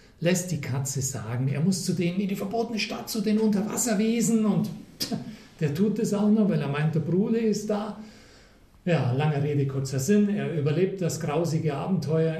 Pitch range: 135-195 Hz